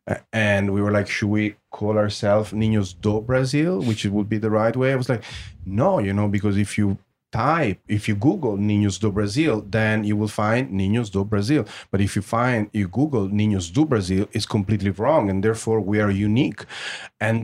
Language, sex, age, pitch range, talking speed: English, male, 30-49, 105-125 Hz, 200 wpm